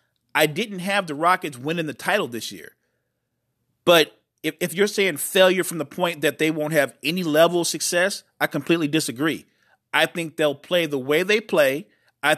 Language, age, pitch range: English, 40-59, 140-185 Hz